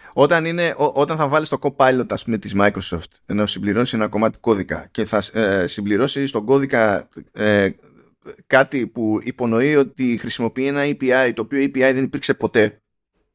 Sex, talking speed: male, 155 wpm